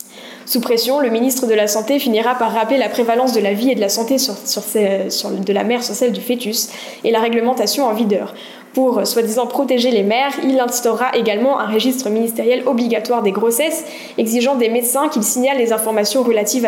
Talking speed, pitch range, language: 210 wpm, 215-255 Hz, French